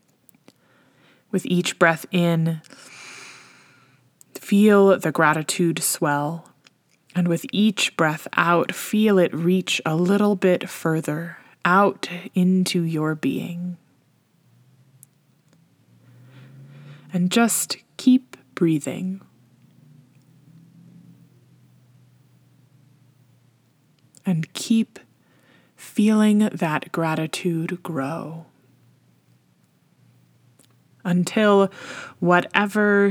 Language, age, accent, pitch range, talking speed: English, 20-39, American, 140-195 Hz, 65 wpm